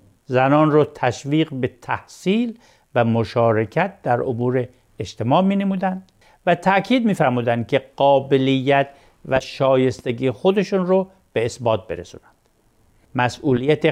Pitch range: 120-165 Hz